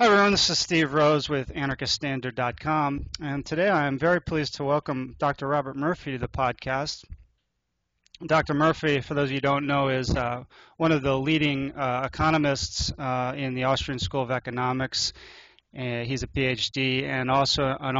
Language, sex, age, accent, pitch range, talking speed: English, male, 30-49, American, 120-140 Hz, 175 wpm